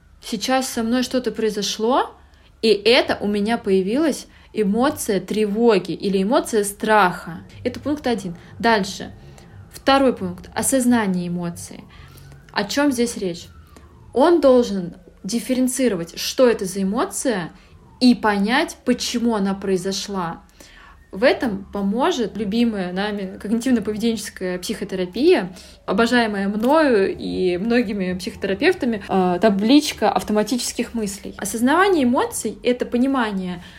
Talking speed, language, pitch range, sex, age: 105 wpm, Russian, 195-255 Hz, female, 20-39